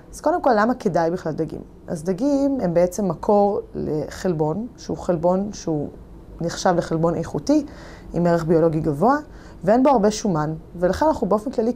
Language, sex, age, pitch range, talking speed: Hebrew, female, 20-39, 170-235 Hz, 160 wpm